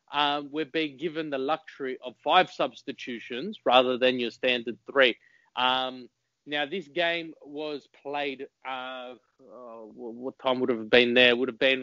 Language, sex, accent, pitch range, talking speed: English, male, Australian, 130-170 Hz, 155 wpm